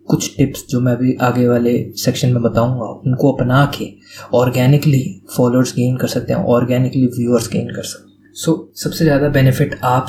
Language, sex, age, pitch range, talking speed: Hindi, male, 20-39, 125-145 Hz, 185 wpm